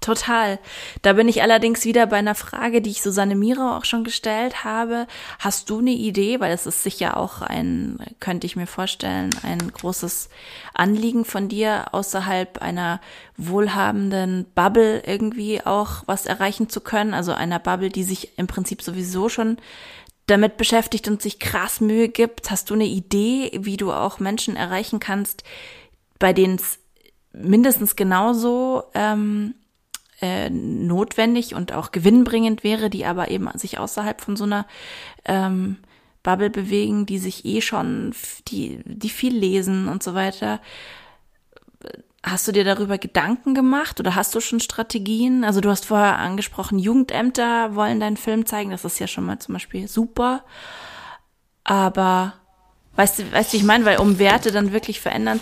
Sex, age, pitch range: female, 20-39, 190-230 Hz